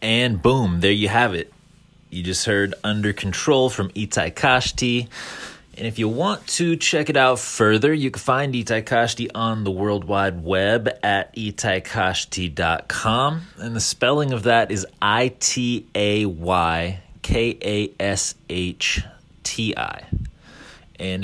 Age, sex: 30-49, male